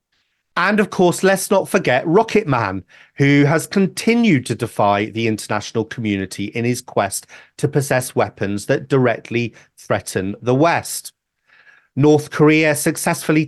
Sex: male